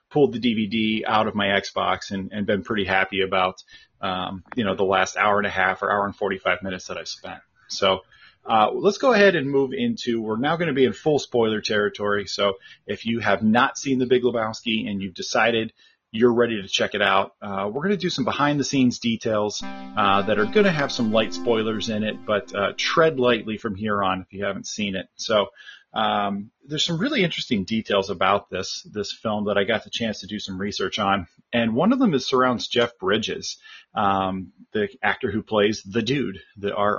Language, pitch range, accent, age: English, 100-135 Hz, American, 30-49